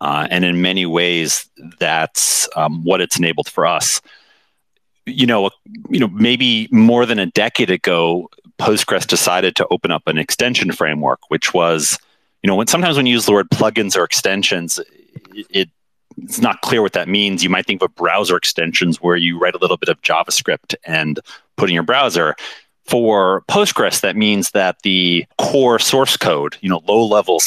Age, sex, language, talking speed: 30-49, male, English, 185 wpm